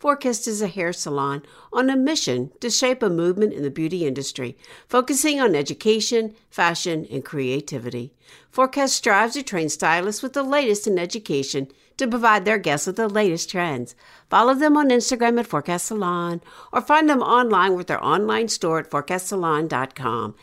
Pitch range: 155-240 Hz